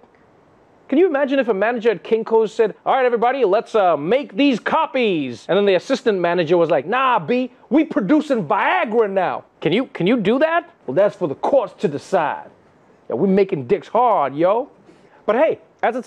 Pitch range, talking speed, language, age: 165-255 Hz, 190 wpm, English, 30-49